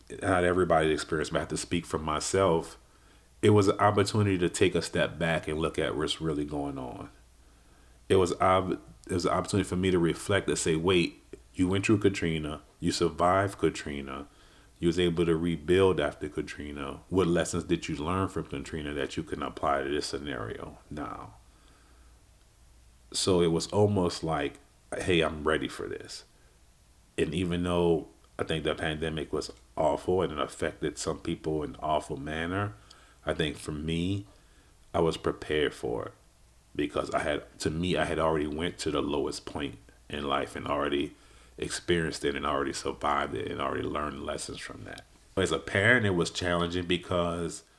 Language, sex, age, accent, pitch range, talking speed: English, male, 40-59, American, 75-95 Hz, 175 wpm